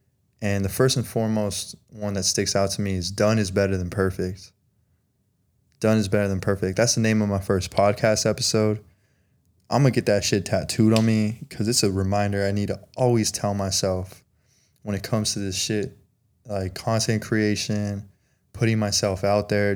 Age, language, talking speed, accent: 20-39, English, 190 wpm, American